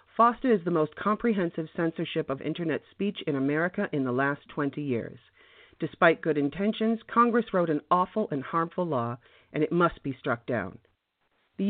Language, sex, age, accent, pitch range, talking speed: English, female, 40-59, American, 135-200 Hz, 170 wpm